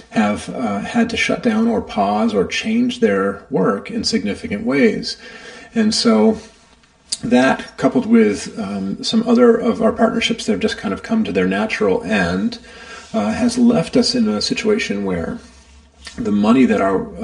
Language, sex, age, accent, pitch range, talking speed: English, male, 40-59, American, 225-230 Hz, 165 wpm